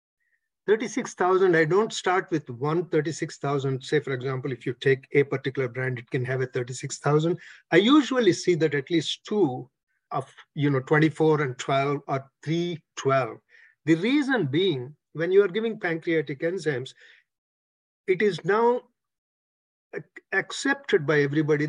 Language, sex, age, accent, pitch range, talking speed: English, male, 50-69, Indian, 140-180 Hz, 140 wpm